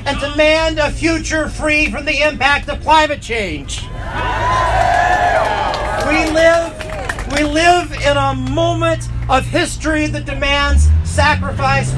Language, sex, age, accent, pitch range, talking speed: English, male, 40-59, American, 245-295 Hz, 110 wpm